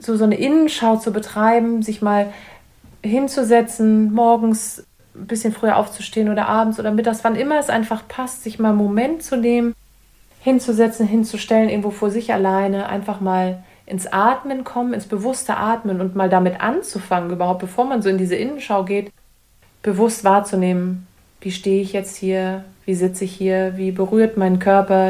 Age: 30-49